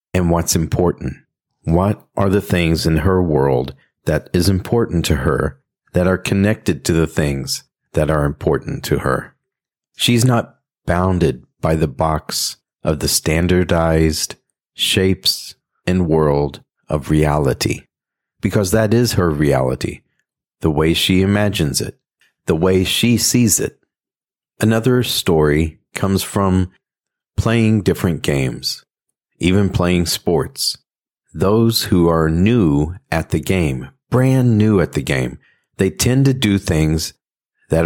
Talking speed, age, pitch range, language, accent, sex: 130 wpm, 40-59, 80-105 Hz, English, American, male